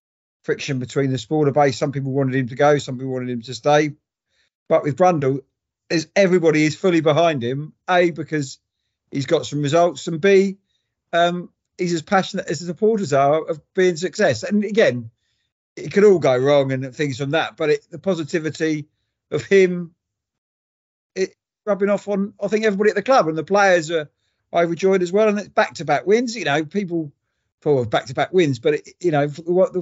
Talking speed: 185 wpm